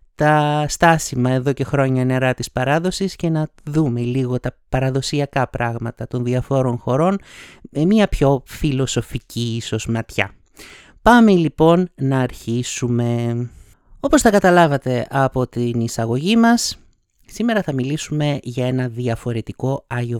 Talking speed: 125 wpm